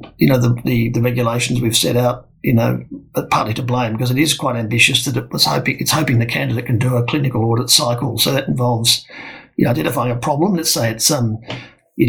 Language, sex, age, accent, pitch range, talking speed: English, male, 50-69, Australian, 120-140 Hz, 230 wpm